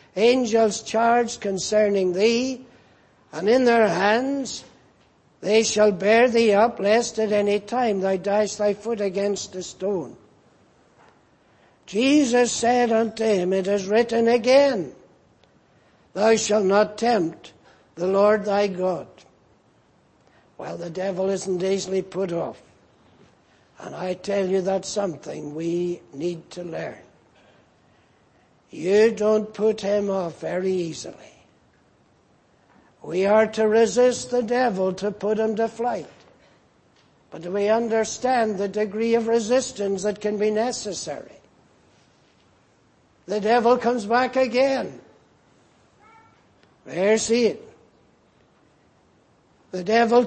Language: English